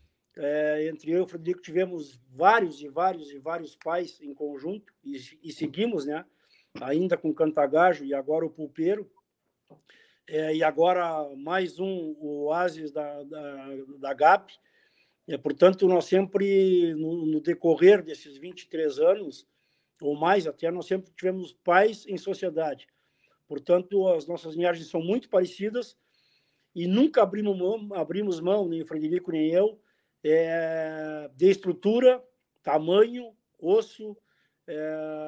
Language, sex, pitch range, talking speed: Portuguese, male, 155-200 Hz, 140 wpm